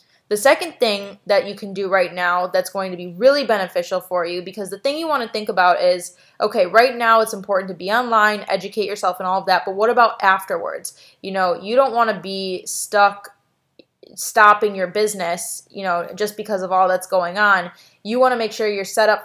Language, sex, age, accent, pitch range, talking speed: English, female, 20-39, American, 185-225 Hz, 225 wpm